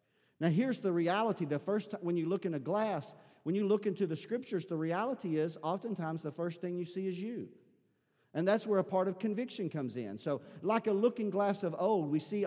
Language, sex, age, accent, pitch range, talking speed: English, male, 50-69, American, 165-200 Hz, 230 wpm